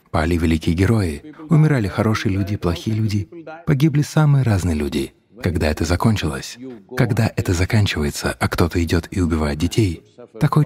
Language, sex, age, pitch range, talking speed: English, male, 30-49, 85-140 Hz, 140 wpm